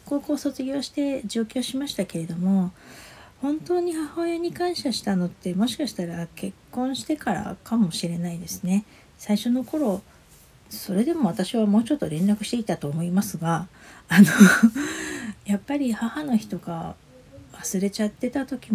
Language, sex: Japanese, female